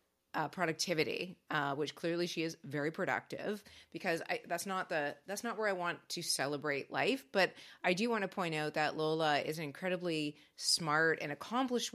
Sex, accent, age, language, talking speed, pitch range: female, American, 30-49, English, 180 wpm, 155-195 Hz